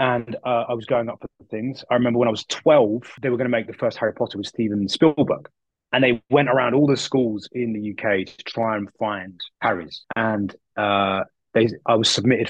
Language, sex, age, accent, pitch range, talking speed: English, male, 20-39, British, 105-125 Hz, 220 wpm